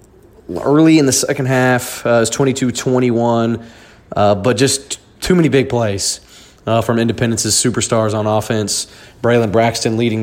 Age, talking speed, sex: 30-49, 140 wpm, male